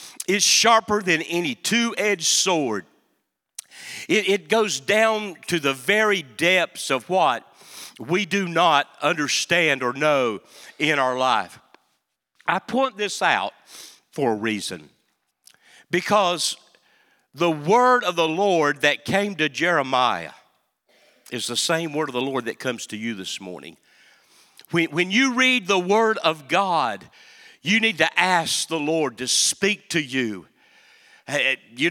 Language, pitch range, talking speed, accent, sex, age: English, 160-200 Hz, 140 wpm, American, male, 50-69